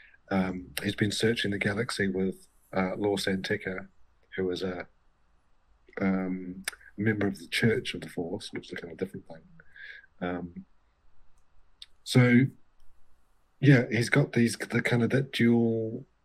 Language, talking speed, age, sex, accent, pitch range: English, 145 wpm, 40-59, male, British, 90-115 Hz